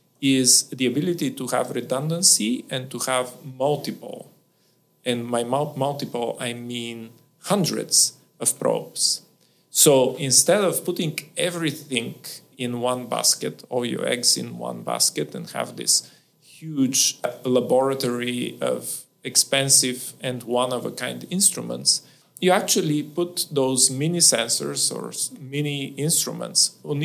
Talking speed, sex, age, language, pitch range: 115 wpm, male, 40-59, English, 125-155 Hz